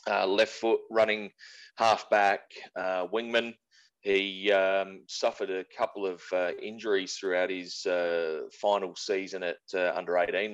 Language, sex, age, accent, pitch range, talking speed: English, male, 30-49, Australian, 90-105 Hz, 130 wpm